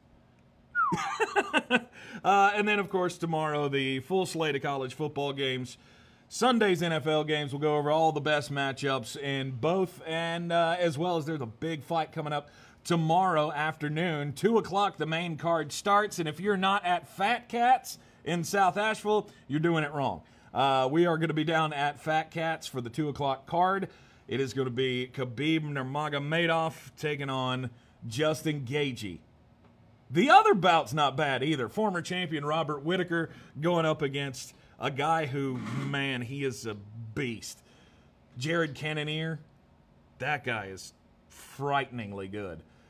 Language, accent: English, American